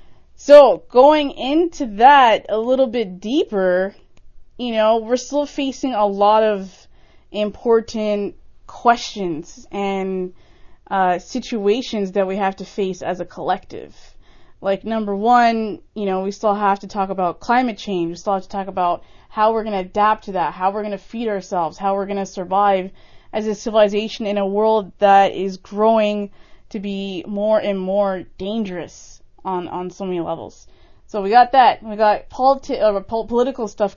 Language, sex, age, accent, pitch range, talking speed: English, female, 20-39, American, 190-235 Hz, 170 wpm